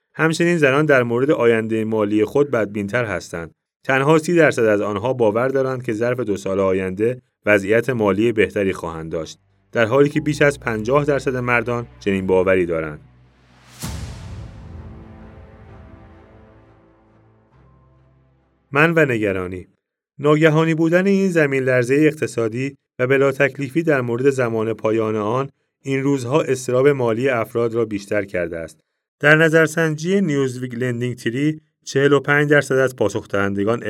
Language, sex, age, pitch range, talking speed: Persian, male, 30-49, 105-140 Hz, 130 wpm